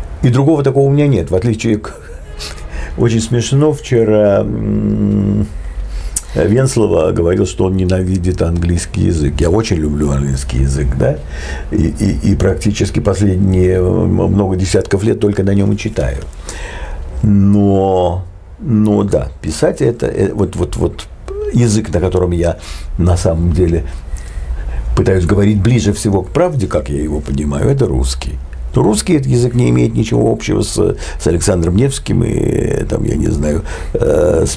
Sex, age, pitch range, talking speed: male, 60-79, 80-110 Hz, 135 wpm